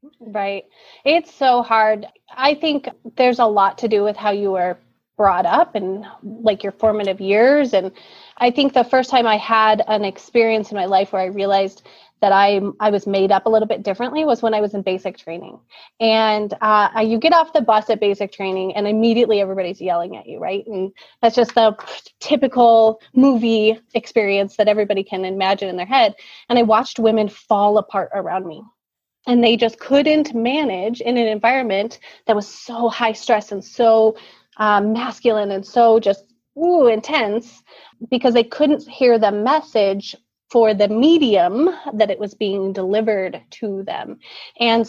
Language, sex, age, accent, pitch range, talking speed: English, female, 30-49, American, 200-240 Hz, 180 wpm